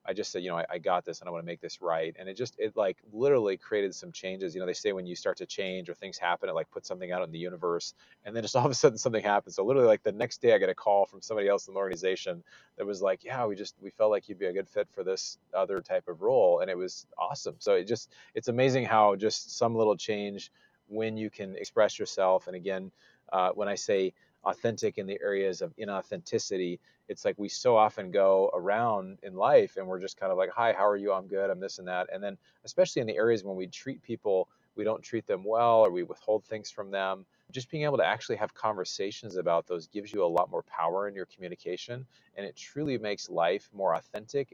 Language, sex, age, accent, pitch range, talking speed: English, male, 30-49, American, 95-155 Hz, 255 wpm